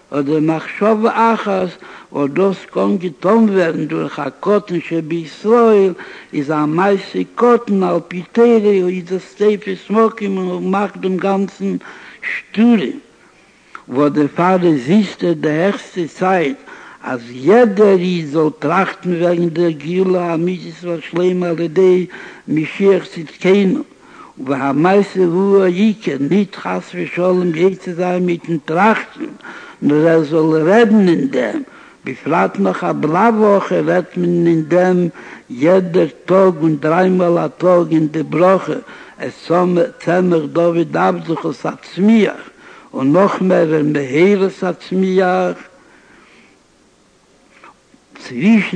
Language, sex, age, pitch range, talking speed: Hebrew, male, 60-79, 160-195 Hz, 120 wpm